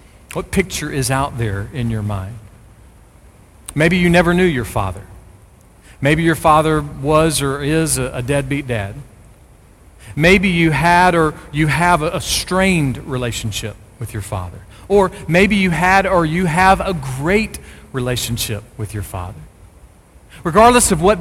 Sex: male